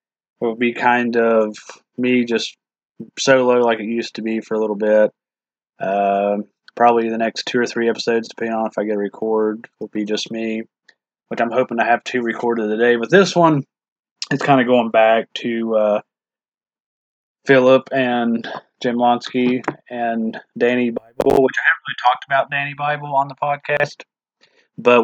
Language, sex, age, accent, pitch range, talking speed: English, male, 30-49, American, 110-125 Hz, 175 wpm